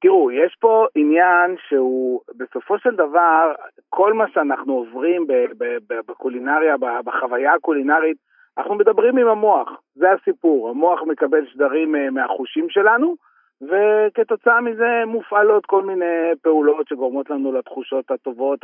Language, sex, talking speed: Hebrew, male, 115 wpm